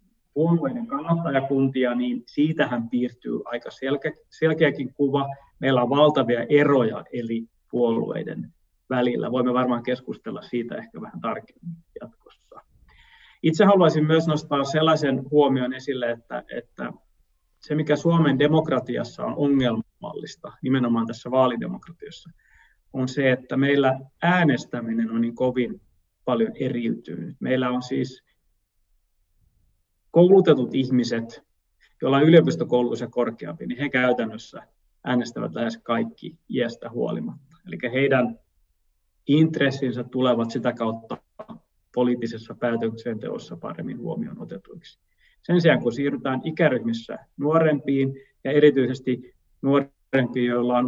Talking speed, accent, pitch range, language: 105 wpm, native, 120-150 Hz, Finnish